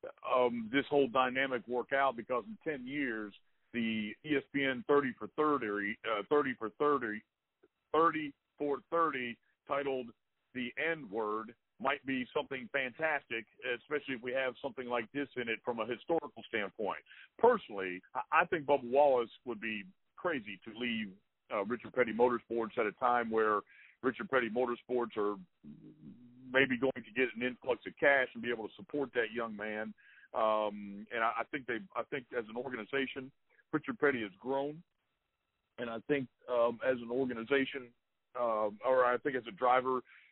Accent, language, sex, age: American, English, male, 50-69